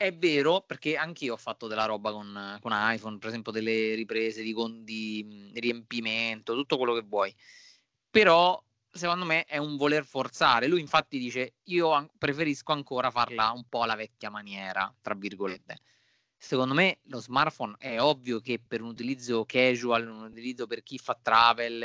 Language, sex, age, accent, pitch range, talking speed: Italian, male, 30-49, native, 110-135 Hz, 170 wpm